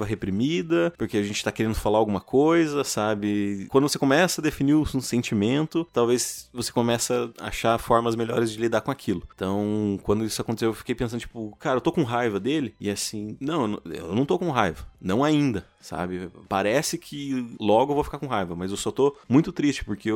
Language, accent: Portuguese, Brazilian